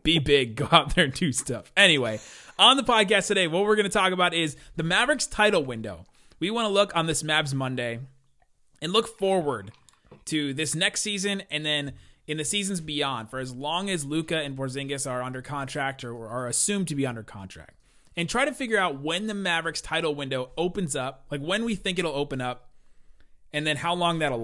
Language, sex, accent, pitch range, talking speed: English, male, American, 130-170 Hz, 210 wpm